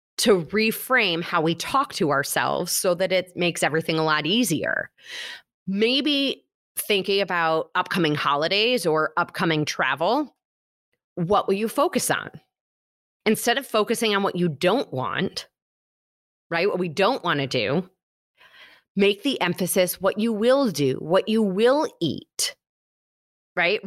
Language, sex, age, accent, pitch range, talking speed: English, female, 30-49, American, 175-245 Hz, 140 wpm